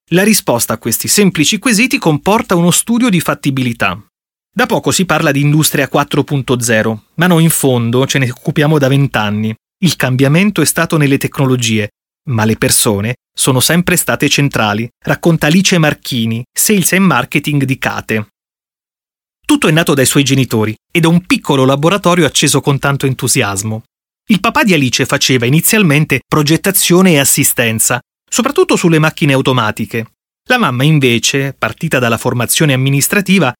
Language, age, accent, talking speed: Italian, 30-49, native, 150 wpm